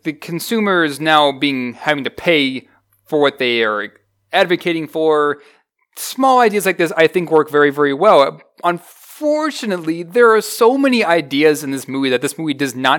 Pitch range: 145-205 Hz